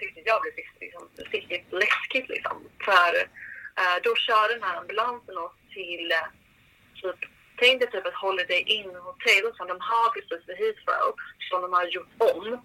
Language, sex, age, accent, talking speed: Swedish, female, 30-49, native, 180 wpm